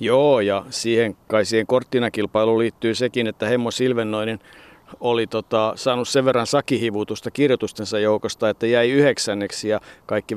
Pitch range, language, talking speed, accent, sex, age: 110-130 Hz, Finnish, 140 wpm, native, male, 50-69